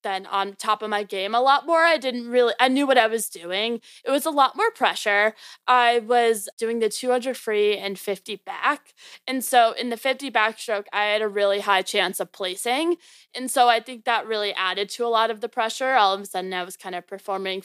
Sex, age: female, 20-39